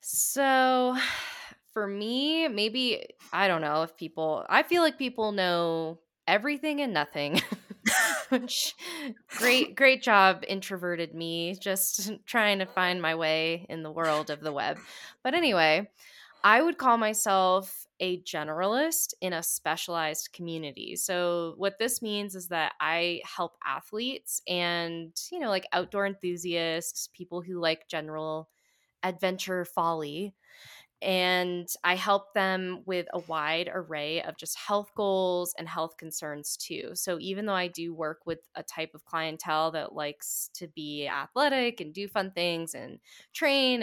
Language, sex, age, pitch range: English, female, 10-29, 160-210 Hz